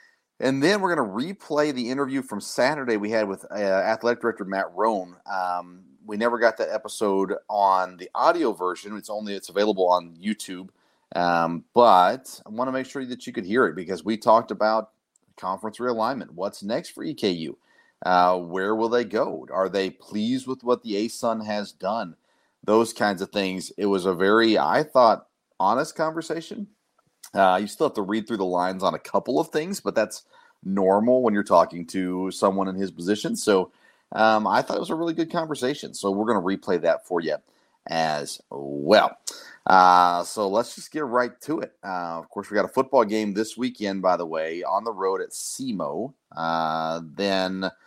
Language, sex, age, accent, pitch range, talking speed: English, male, 30-49, American, 95-120 Hz, 190 wpm